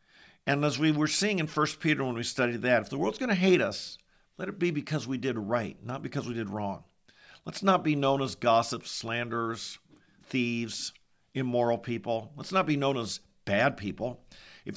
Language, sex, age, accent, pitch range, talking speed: English, male, 50-69, American, 115-145 Hz, 200 wpm